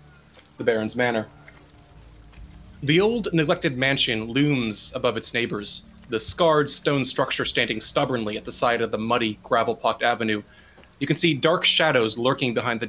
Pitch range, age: 110-145 Hz, 30-49